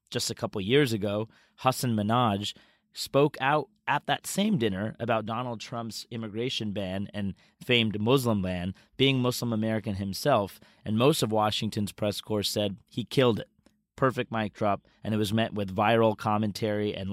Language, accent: English, American